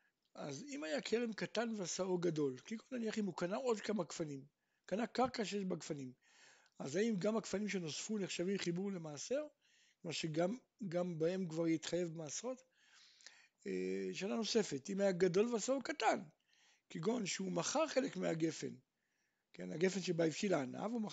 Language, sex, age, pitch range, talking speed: Hebrew, male, 60-79, 175-235 Hz, 150 wpm